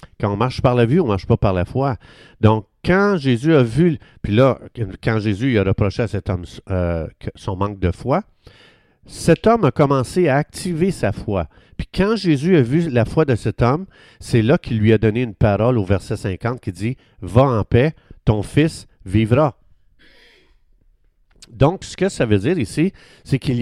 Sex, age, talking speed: male, 50-69, 205 wpm